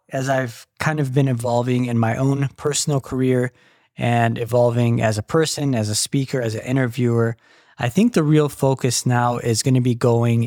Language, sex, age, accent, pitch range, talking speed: English, male, 20-39, American, 120-145 Hz, 190 wpm